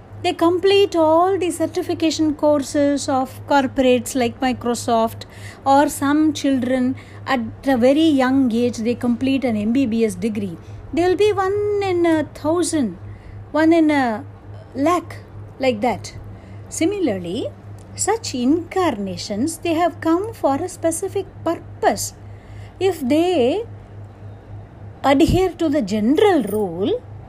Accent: native